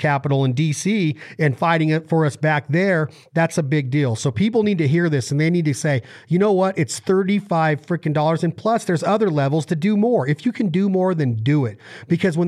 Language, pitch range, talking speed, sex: English, 135-175 Hz, 240 wpm, male